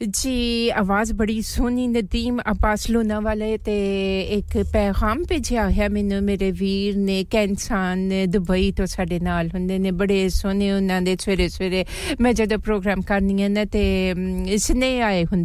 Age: 30-49